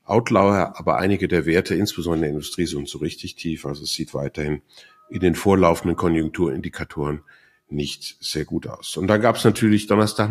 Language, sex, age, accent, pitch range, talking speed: German, male, 50-69, German, 85-115 Hz, 180 wpm